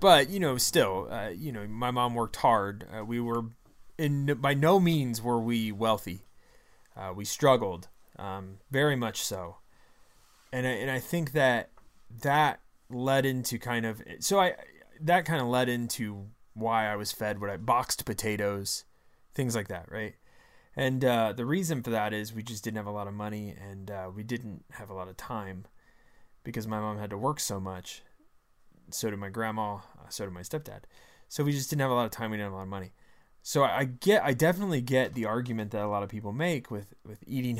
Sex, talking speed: male, 210 wpm